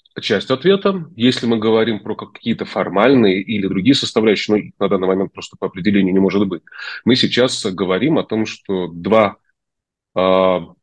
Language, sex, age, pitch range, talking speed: Russian, male, 30-49, 95-115 Hz, 165 wpm